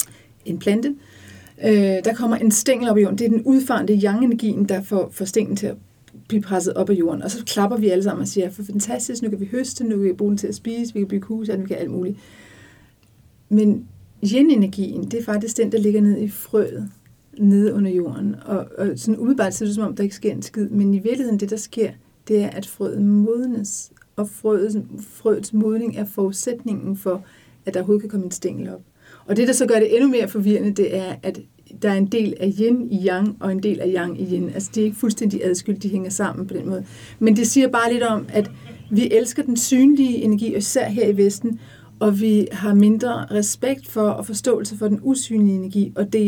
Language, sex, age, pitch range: Danish, female, 40-59, 195-225 Hz